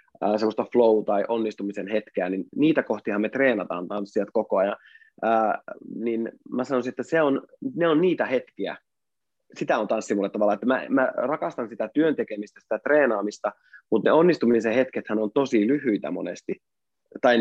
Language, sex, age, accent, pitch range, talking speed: Finnish, male, 20-39, native, 105-130 Hz, 155 wpm